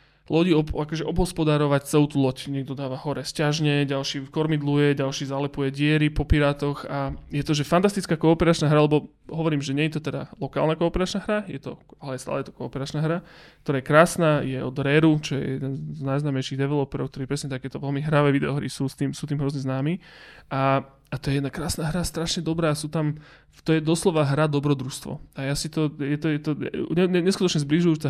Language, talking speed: Slovak, 205 wpm